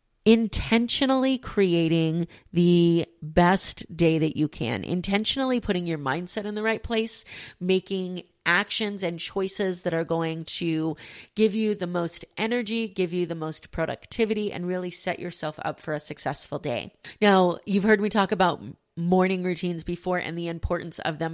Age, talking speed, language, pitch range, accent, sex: 30-49, 160 wpm, English, 160-200 Hz, American, female